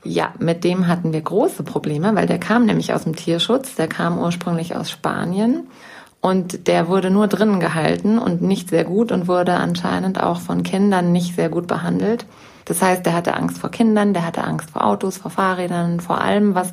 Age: 30-49